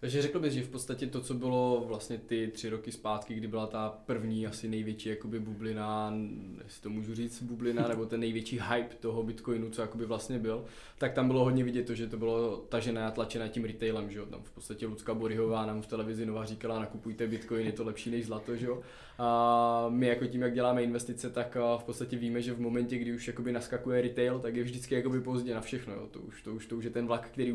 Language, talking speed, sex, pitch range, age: Czech, 230 wpm, male, 115-120 Hz, 20-39